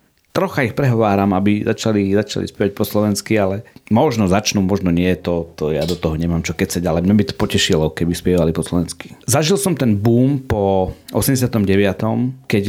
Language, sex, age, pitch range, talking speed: Slovak, male, 40-59, 100-120 Hz, 180 wpm